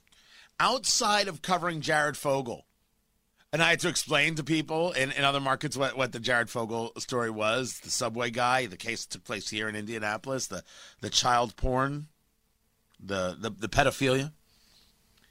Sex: male